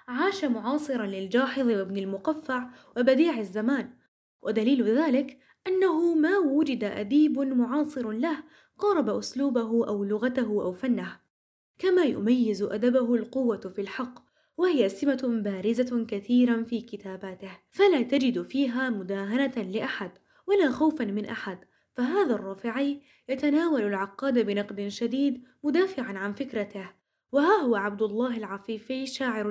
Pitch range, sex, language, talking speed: 215-275 Hz, female, Arabic, 115 wpm